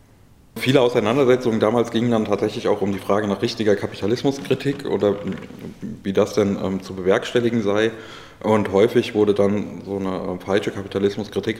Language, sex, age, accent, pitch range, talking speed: German, male, 20-39, German, 95-110 Hz, 155 wpm